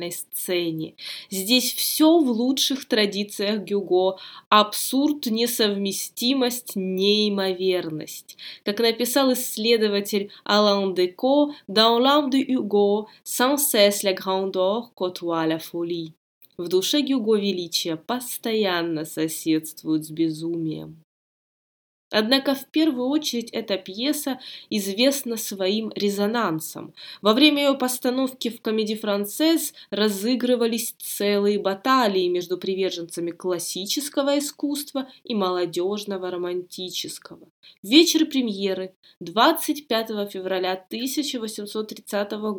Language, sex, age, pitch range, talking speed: Russian, female, 20-39, 185-250 Hz, 80 wpm